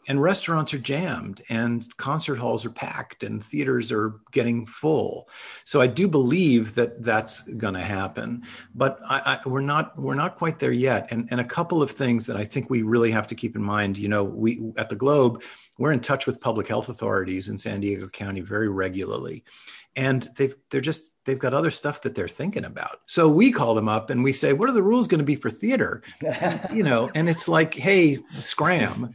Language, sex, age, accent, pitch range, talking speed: English, male, 40-59, American, 110-150 Hz, 215 wpm